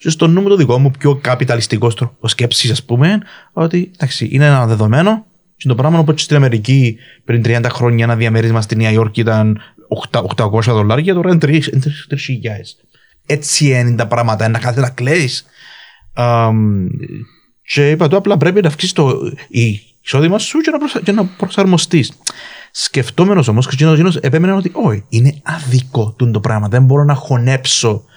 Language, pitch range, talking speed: Greek, 115-155 Hz, 160 wpm